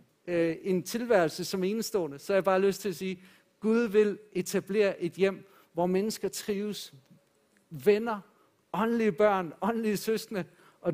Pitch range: 185-220 Hz